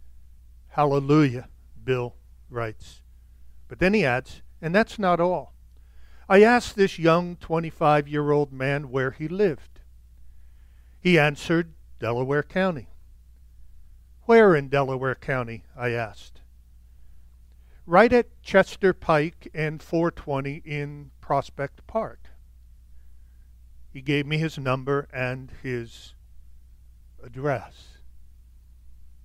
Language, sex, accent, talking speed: English, male, American, 95 wpm